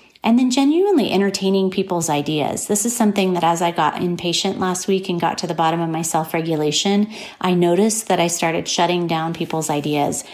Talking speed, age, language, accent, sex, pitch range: 195 wpm, 30-49, English, American, female, 165-200 Hz